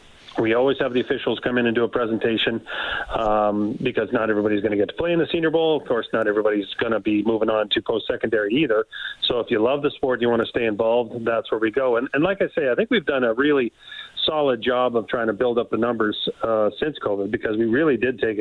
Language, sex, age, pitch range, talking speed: English, male, 40-59, 115-145 Hz, 260 wpm